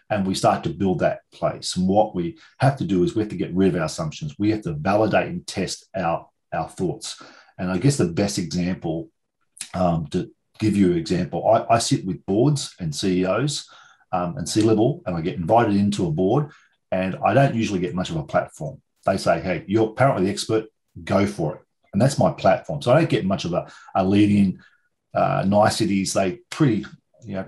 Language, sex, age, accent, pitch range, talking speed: English, male, 40-59, Australian, 95-110 Hz, 210 wpm